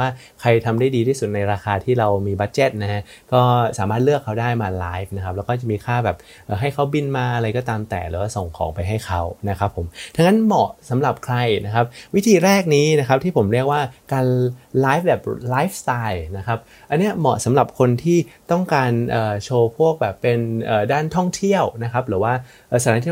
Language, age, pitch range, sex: Thai, 30-49, 110-145 Hz, male